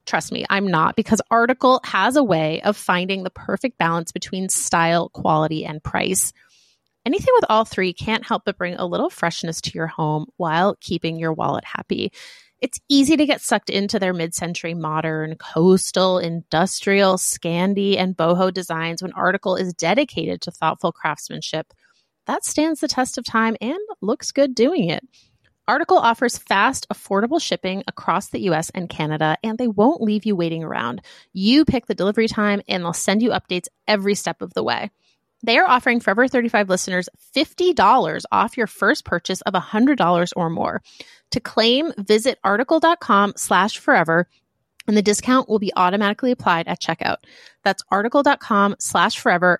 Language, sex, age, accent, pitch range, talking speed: English, female, 30-49, American, 175-235 Hz, 165 wpm